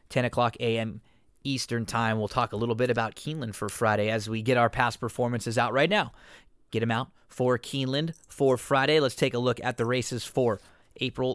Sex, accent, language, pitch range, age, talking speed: male, American, English, 115-140 Hz, 20-39, 205 wpm